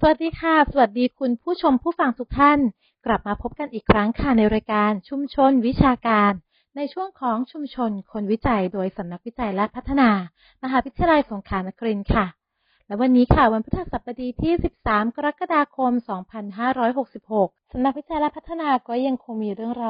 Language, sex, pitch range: English, female, 205-270 Hz